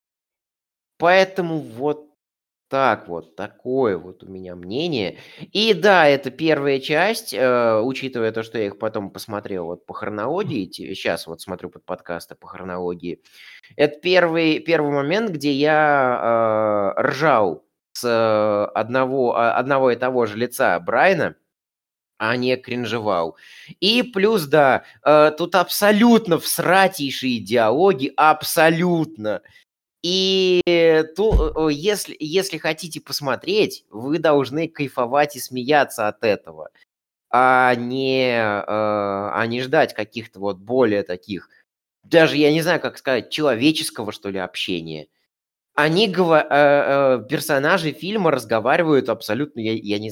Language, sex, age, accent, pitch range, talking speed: Russian, male, 20-39, native, 110-160 Hz, 115 wpm